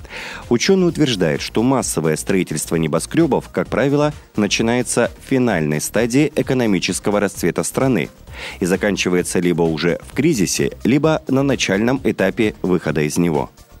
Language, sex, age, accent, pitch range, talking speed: Russian, male, 30-49, native, 90-125 Hz, 120 wpm